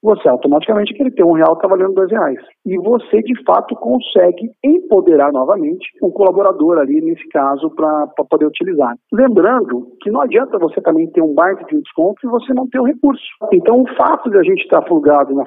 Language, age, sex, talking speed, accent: Portuguese, 50-69, male, 210 wpm, Brazilian